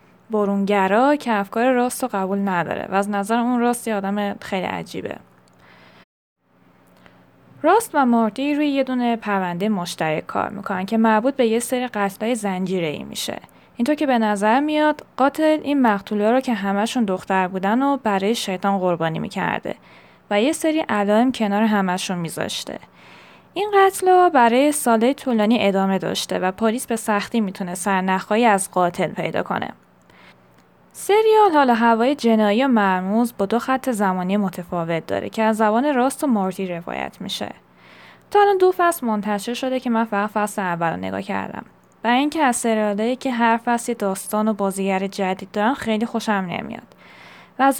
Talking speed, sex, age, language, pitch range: 160 wpm, female, 10-29, Persian, 195-255 Hz